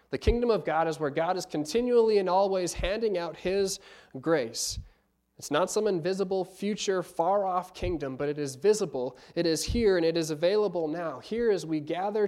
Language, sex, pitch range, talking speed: English, male, 150-195 Hz, 185 wpm